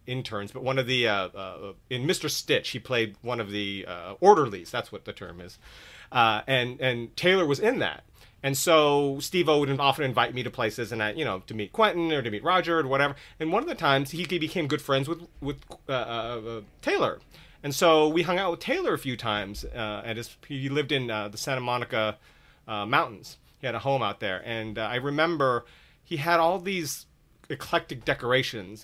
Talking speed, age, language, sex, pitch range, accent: 215 wpm, 30-49, English, male, 115-150 Hz, American